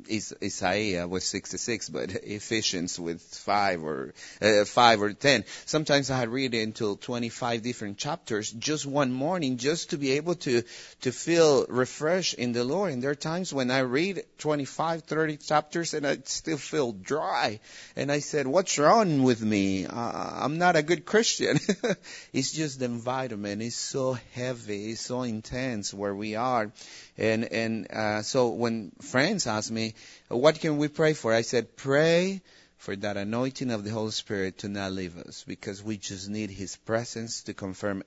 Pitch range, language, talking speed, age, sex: 105-150 Hz, English, 175 wpm, 30-49, male